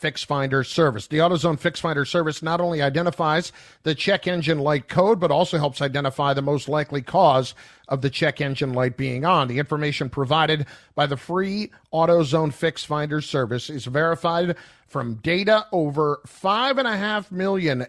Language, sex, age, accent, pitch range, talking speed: English, male, 50-69, American, 145-195 Hz, 170 wpm